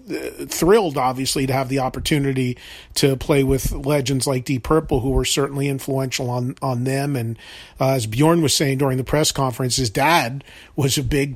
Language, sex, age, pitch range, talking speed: English, male, 40-59, 135-155 Hz, 185 wpm